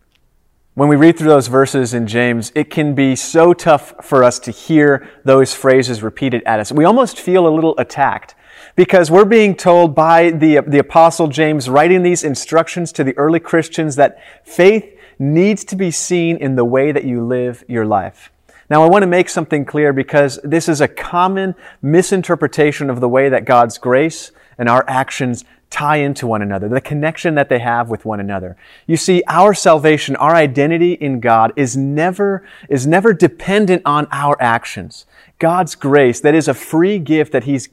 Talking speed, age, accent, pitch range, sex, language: 185 wpm, 30-49, American, 130-170 Hz, male, English